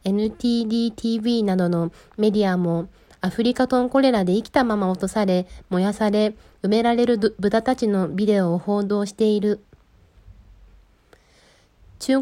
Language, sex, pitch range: Japanese, female, 195-245 Hz